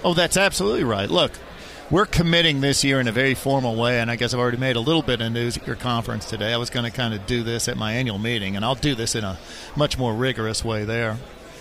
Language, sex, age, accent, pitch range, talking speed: English, male, 40-59, American, 115-145 Hz, 270 wpm